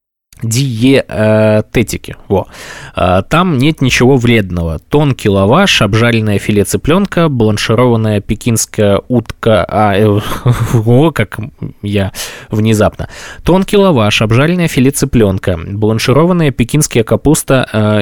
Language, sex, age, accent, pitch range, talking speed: Russian, male, 20-39, native, 110-145 Hz, 100 wpm